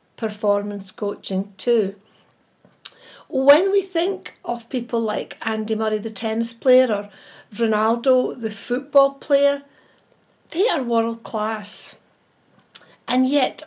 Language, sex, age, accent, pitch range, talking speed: English, female, 60-79, British, 210-260 Hz, 110 wpm